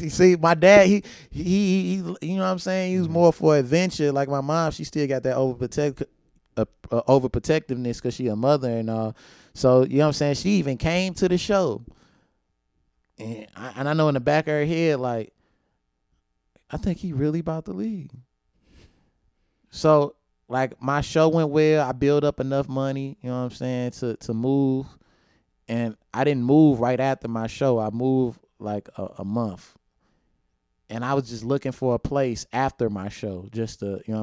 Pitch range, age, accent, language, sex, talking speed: 110-145 Hz, 20-39, American, English, male, 200 wpm